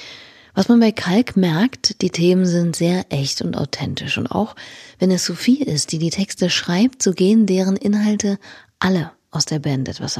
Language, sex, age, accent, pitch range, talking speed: German, female, 30-49, German, 155-200 Hz, 185 wpm